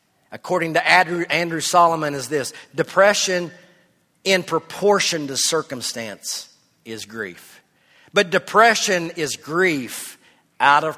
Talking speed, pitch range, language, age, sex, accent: 110 wpm, 165-220 Hz, English, 50-69, male, American